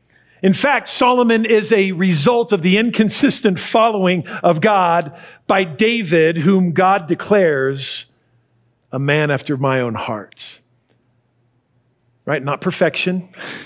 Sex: male